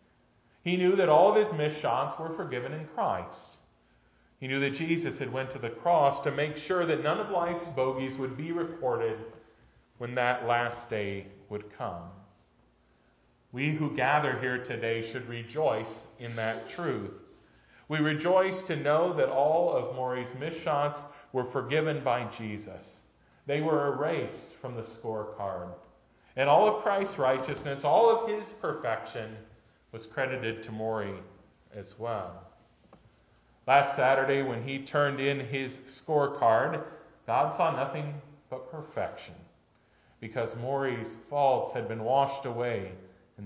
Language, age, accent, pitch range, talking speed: English, 40-59, American, 115-150 Hz, 140 wpm